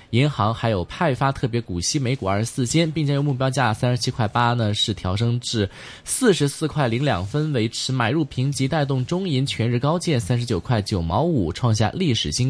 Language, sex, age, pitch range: Chinese, male, 20-39, 110-150 Hz